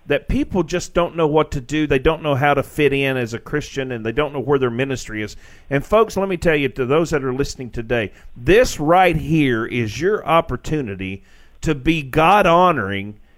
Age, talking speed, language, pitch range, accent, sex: 40-59, 210 wpm, English, 120-170 Hz, American, male